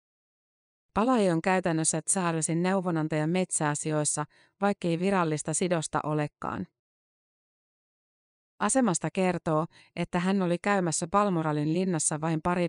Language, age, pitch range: Finnish, 30-49, 155-185 Hz